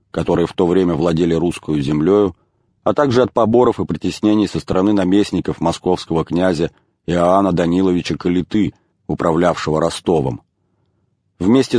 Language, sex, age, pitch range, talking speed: English, male, 40-59, 90-110 Hz, 120 wpm